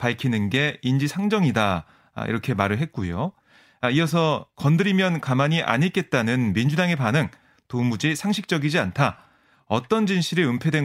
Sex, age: male, 30-49